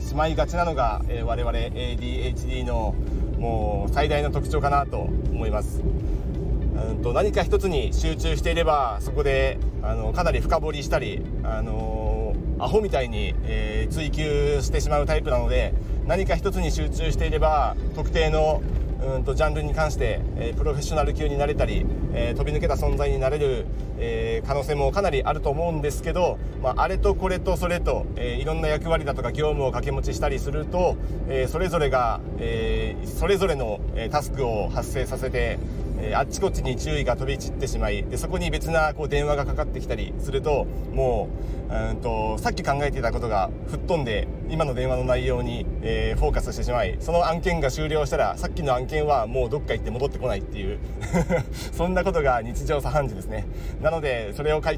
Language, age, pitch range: Japanese, 40-59, 110-150 Hz